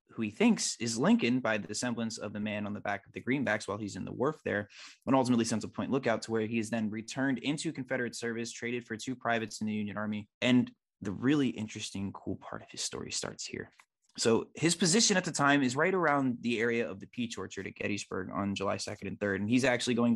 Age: 20-39